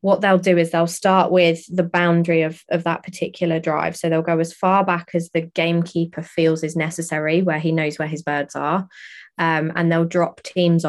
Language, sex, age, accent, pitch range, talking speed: English, female, 20-39, British, 155-175 Hz, 210 wpm